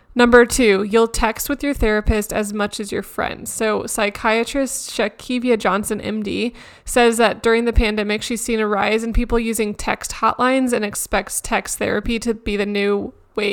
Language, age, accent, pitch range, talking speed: English, 20-39, American, 215-245 Hz, 180 wpm